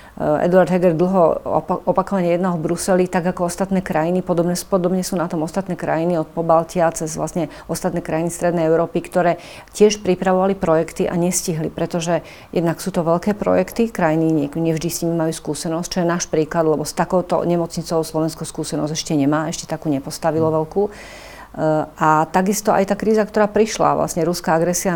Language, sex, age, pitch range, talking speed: Slovak, female, 40-59, 160-180 Hz, 175 wpm